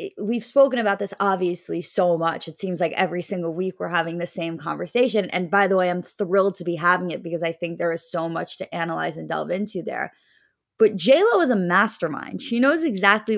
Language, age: English, 20-39